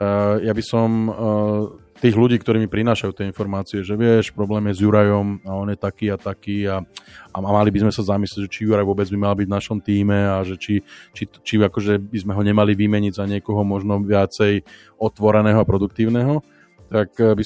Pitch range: 100-110 Hz